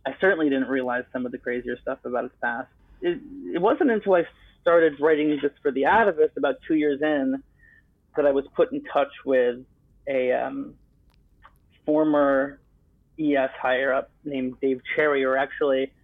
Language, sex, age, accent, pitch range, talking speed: English, male, 30-49, American, 130-160 Hz, 170 wpm